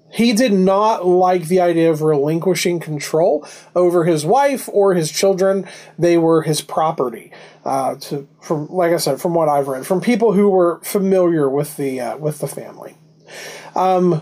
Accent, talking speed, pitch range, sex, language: American, 175 wpm, 160-205 Hz, male, English